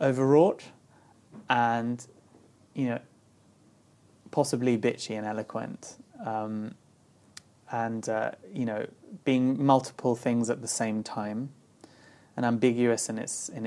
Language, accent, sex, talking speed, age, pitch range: English, British, male, 110 wpm, 20-39, 115-130 Hz